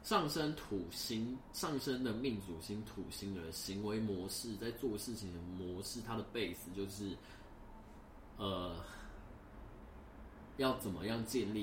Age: 20-39